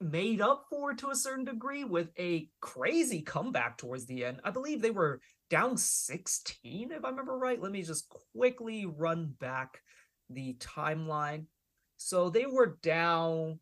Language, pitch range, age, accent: English, 155-215 Hz, 20-39, American